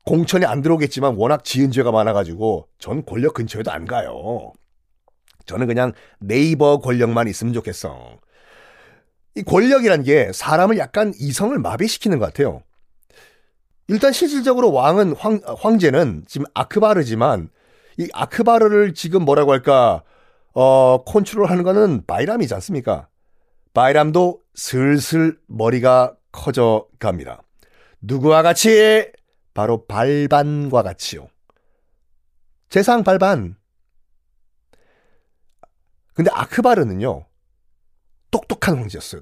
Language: Korean